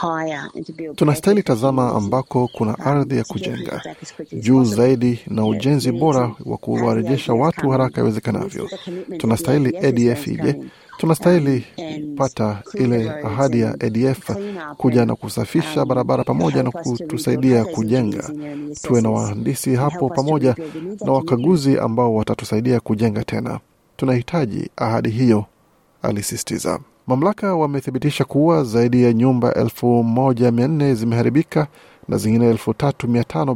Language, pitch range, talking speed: Swahili, 115-145 Hz, 105 wpm